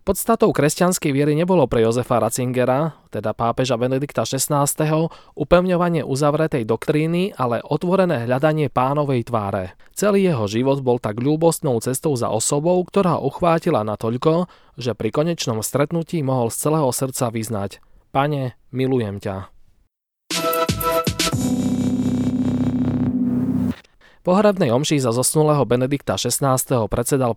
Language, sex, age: Slovak, male, 20-39